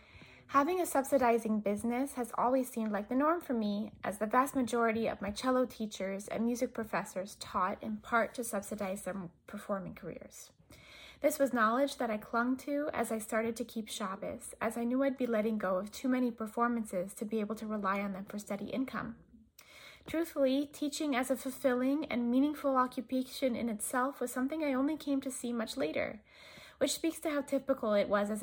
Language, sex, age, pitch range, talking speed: English, female, 20-39, 215-265 Hz, 195 wpm